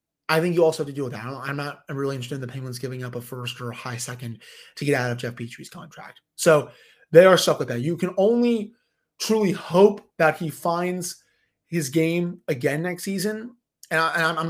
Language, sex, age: English, male, 20-39